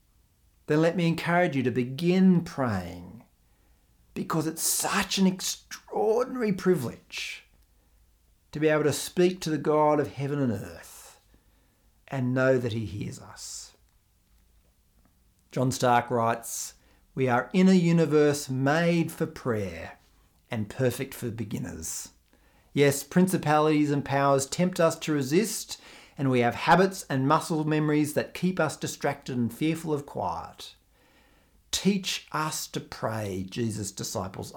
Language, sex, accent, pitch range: English, male, Australian, 115-155 Hz